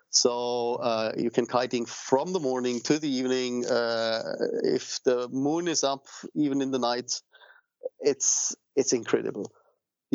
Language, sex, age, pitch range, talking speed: English, male, 30-49, 115-130 Hz, 150 wpm